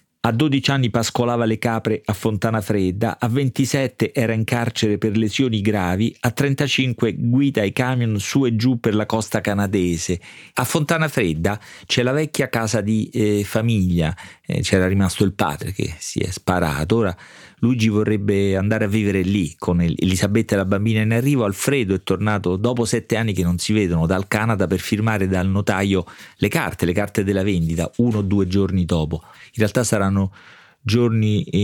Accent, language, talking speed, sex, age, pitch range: native, Italian, 175 wpm, male, 40-59, 95-120 Hz